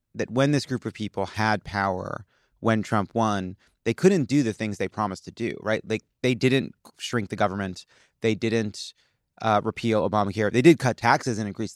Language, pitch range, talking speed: English, 100-120 Hz, 195 wpm